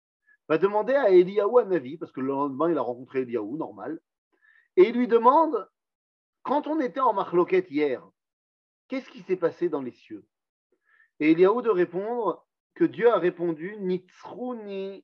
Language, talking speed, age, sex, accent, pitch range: French, 165 wpm, 40-59, male, French, 145-245 Hz